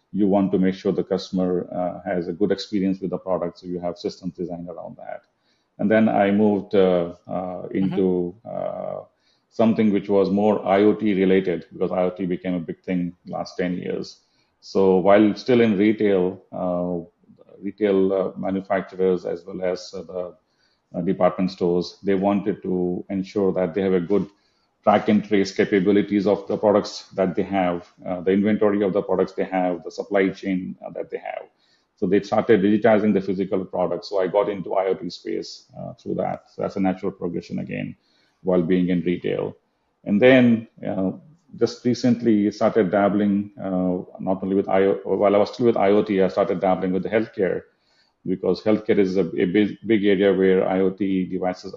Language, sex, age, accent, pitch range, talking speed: English, male, 40-59, Indian, 90-100 Hz, 180 wpm